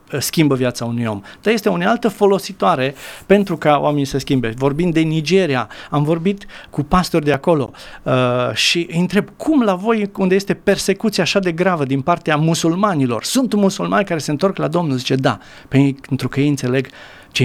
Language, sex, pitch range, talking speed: Romanian, male, 130-185 Hz, 180 wpm